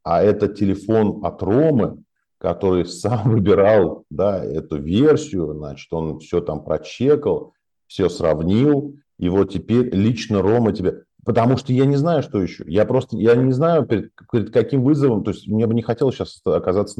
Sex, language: male, Russian